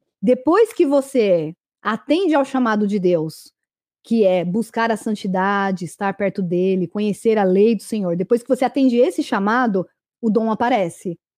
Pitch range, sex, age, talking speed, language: 195-255 Hz, female, 20-39, 160 wpm, Portuguese